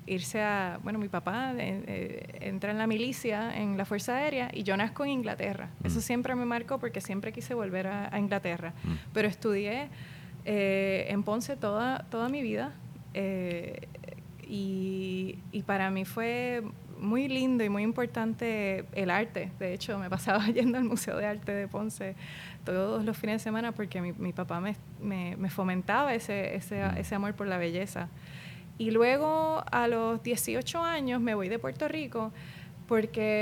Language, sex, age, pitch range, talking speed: Spanish, female, 20-39, 185-225 Hz, 170 wpm